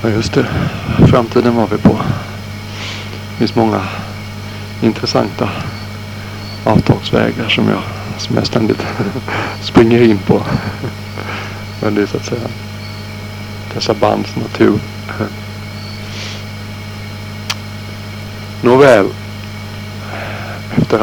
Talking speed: 90 wpm